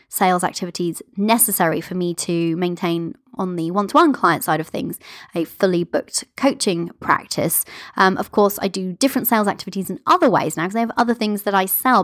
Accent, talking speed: British, 195 wpm